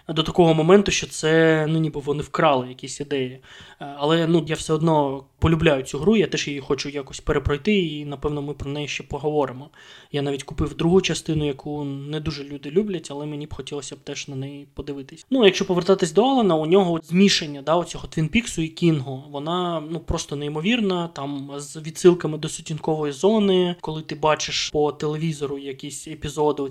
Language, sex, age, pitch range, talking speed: Ukrainian, male, 20-39, 145-180 Hz, 185 wpm